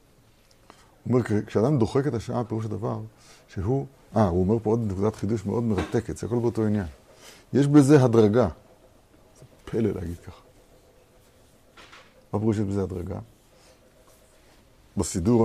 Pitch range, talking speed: 95-125 Hz, 135 wpm